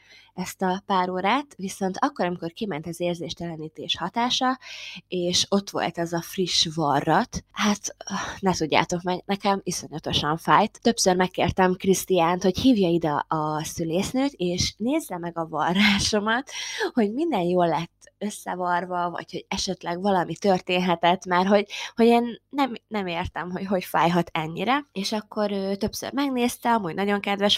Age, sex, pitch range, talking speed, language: 20-39, female, 170-205 Hz, 145 wpm, Hungarian